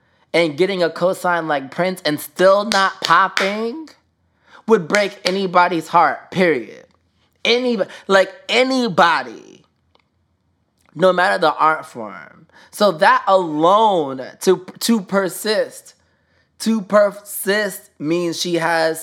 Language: English